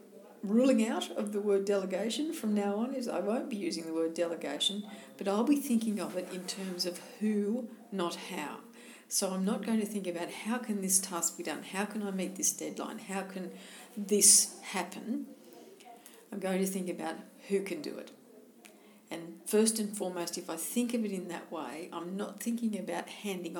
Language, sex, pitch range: English, female, 175-225 Hz